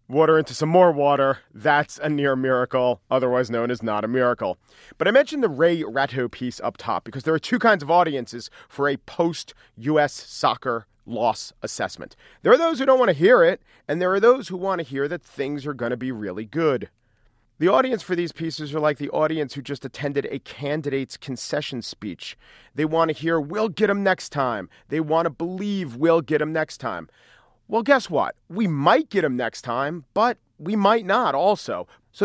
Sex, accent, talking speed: male, American, 205 wpm